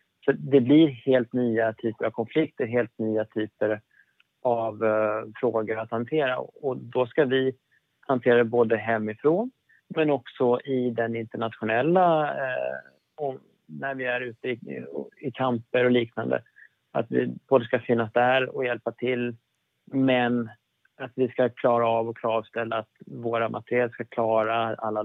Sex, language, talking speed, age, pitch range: male, Swedish, 150 wpm, 30-49, 110-125 Hz